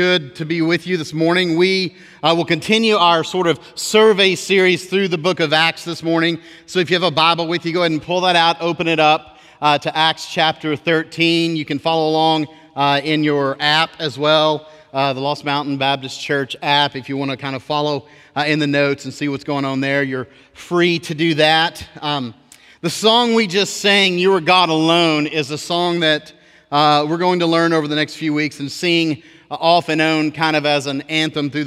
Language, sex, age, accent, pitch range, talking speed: English, male, 40-59, American, 145-165 Hz, 225 wpm